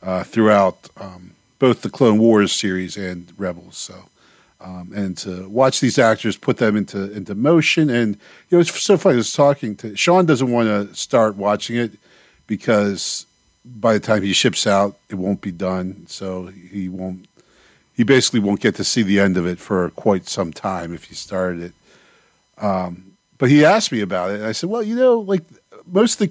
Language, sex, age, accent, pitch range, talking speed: English, male, 50-69, American, 95-130 Hz, 205 wpm